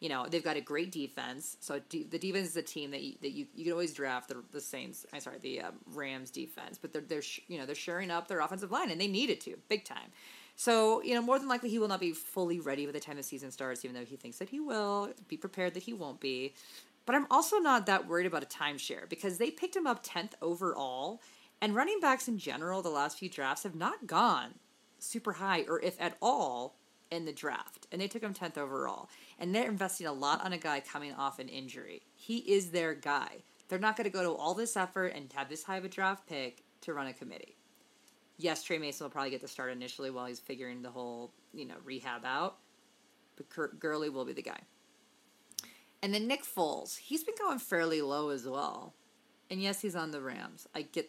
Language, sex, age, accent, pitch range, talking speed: English, female, 30-49, American, 140-205 Hz, 235 wpm